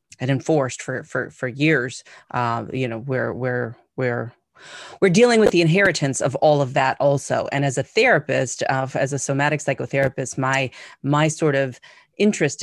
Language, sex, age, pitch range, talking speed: English, female, 30-49, 130-140 Hz, 175 wpm